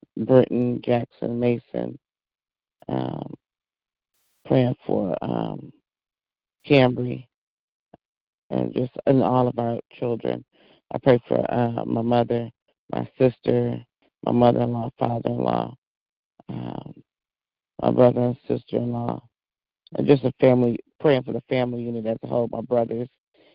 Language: English